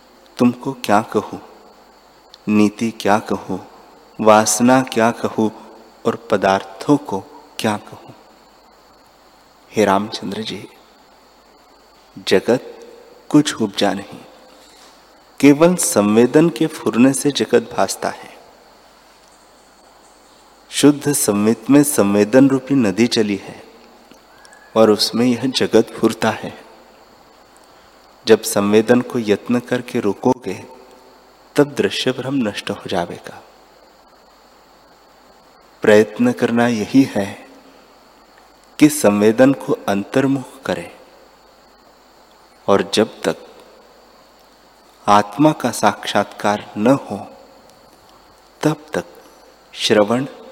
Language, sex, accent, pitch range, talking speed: Hindi, male, native, 105-135 Hz, 90 wpm